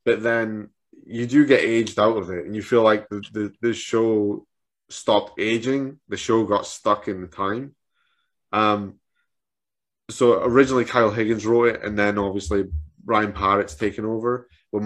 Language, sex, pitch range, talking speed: English, male, 105-130 Hz, 160 wpm